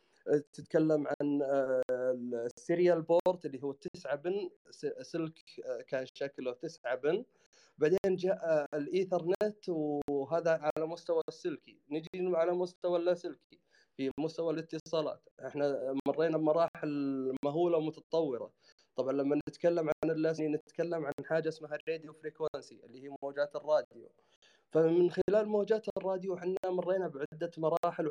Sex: male